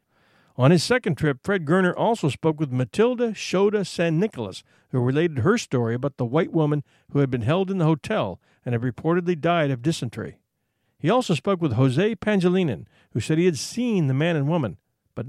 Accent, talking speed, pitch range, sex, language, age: American, 195 wpm, 130-180 Hz, male, English, 50-69